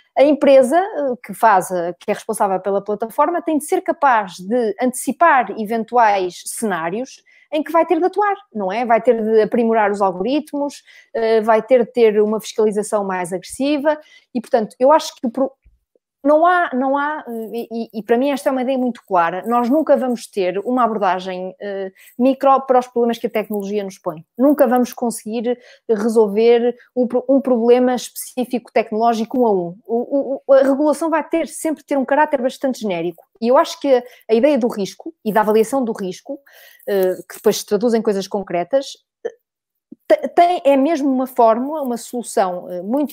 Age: 20-39